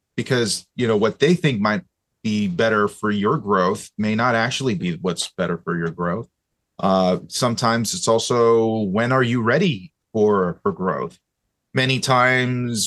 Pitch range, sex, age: 105-140 Hz, male, 30-49